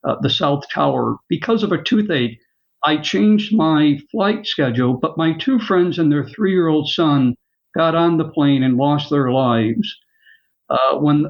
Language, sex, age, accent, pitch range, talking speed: English, male, 60-79, American, 150-220 Hz, 165 wpm